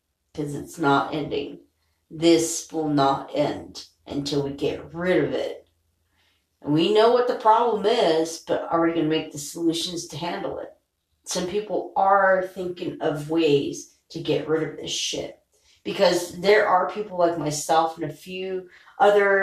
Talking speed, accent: 165 wpm, American